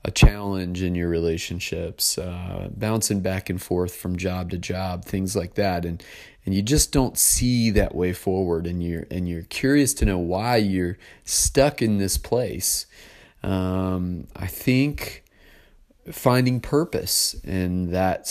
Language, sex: English, male